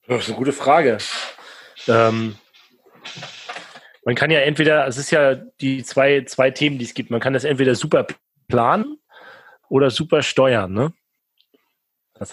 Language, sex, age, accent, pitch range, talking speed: German, male, 30-49, German, 115-135 Hz, 145 wpm